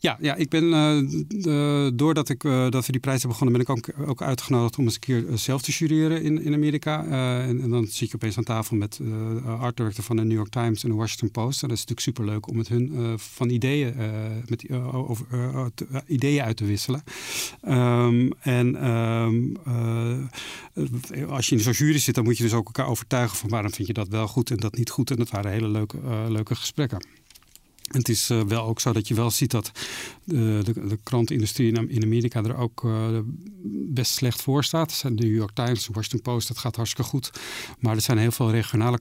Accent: Dutch